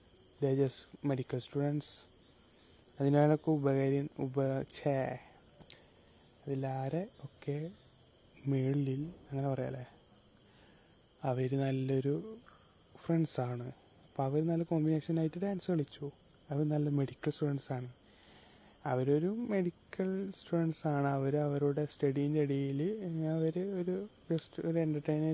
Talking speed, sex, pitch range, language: 85 wpm, male, 130-155 Hz, Malayalam